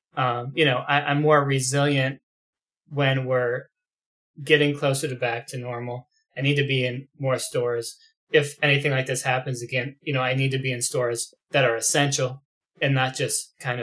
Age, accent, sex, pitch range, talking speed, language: 20-39, American, male, 130-155 Hz, 180 wpm, English